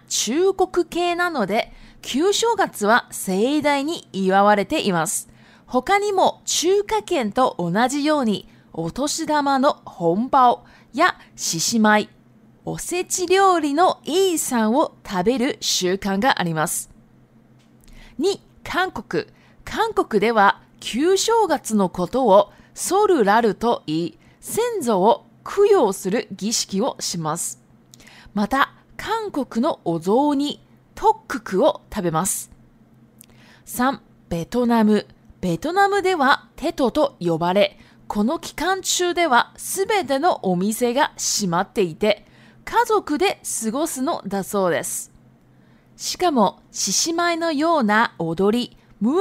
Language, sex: Japanese, female